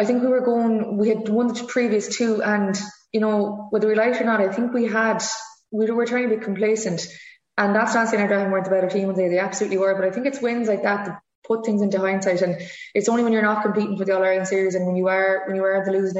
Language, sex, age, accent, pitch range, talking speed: English, female, 20-39, Irish, 185-215 Hz, 295 wpm